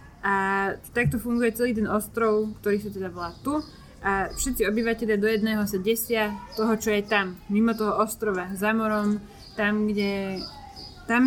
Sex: female